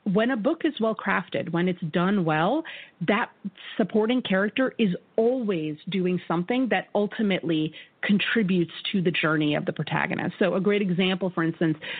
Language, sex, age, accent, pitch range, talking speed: English, female, 30-49, American, 170-210 Hz, 160 wpm